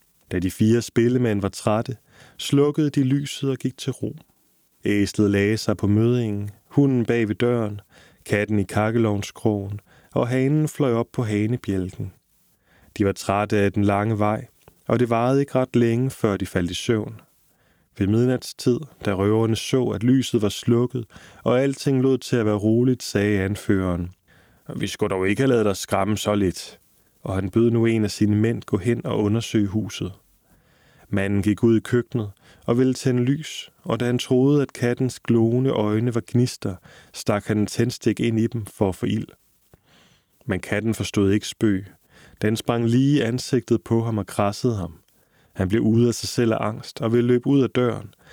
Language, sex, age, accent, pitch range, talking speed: Danish, male, 20-39, native, 100-125 Hz, 185 wpm